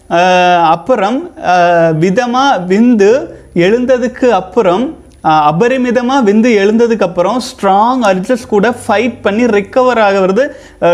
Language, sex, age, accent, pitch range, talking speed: Tamil, male, 30-49, native, 185-245 Hz, 80 wpm